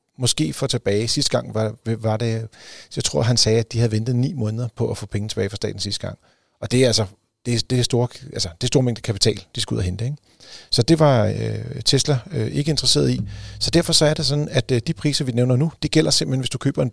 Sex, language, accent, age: male, Danish, native, 40-59